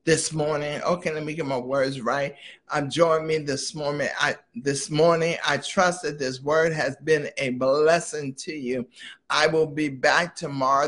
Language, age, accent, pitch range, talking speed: English, 60-79, American, 135-160 Hz, 180 wpm